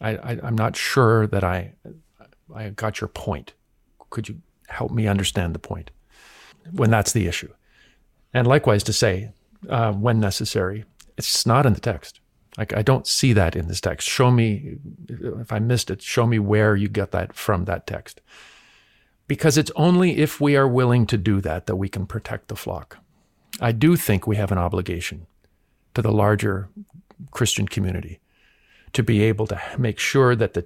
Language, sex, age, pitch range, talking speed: English, male, 50-69, 100-130 Hz, 180 wpm